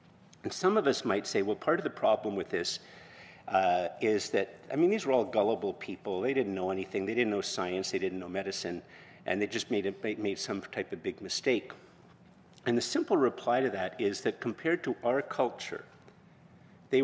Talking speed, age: 205 wpm, 50-69